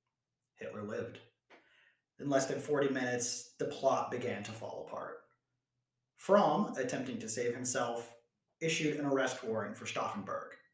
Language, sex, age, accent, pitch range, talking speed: English, male, 30-49, American, 125-175 Hz, 135 wpm